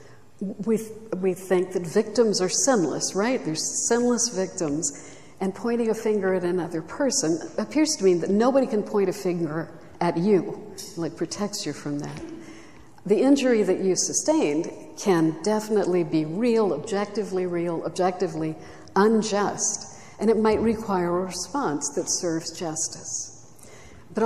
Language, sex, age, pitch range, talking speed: English, female, 60-79, 165-205 Hz, 145 wpm